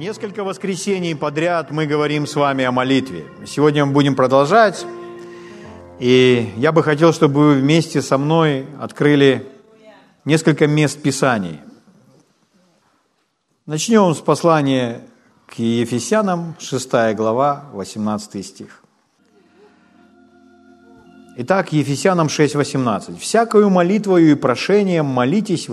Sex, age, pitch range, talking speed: male, 50-69, 130-175 Hz, 105 wpm